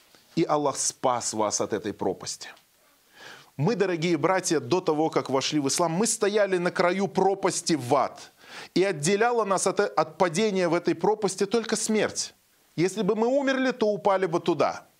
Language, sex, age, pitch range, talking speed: Russian, male, 20-39, 155-220 Hz, 165 wpm